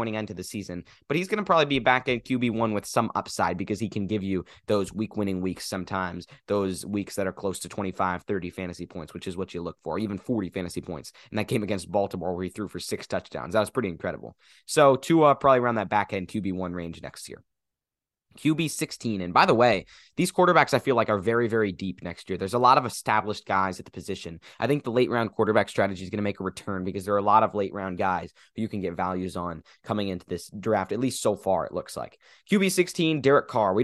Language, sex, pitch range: English, male, 95-120 Hz